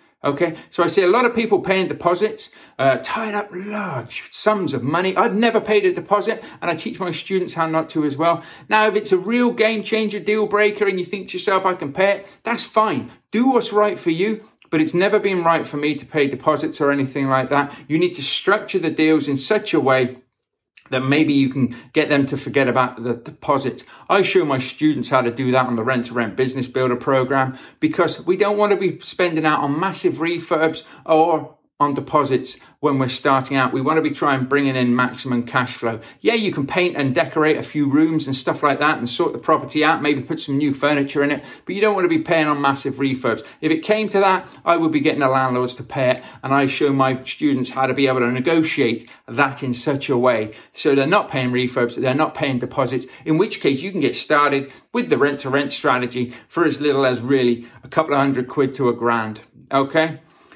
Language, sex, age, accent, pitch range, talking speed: English, male, 40-59, British, 130-185 Hz, 235 wpm